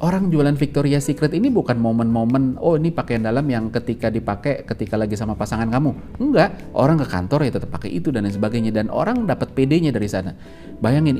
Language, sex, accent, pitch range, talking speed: Indonesian, male, native, 105-140 Hz, 200 wpm